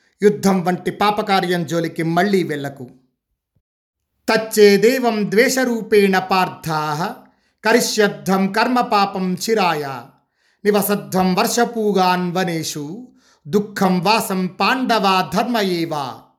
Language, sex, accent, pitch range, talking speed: Telugu, male, native, 180-215 Hz, 75 wpm